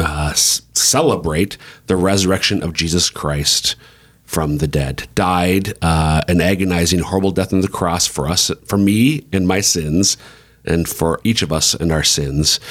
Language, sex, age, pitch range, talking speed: English, male, 40-59, 80-105 Hz, 165 wpm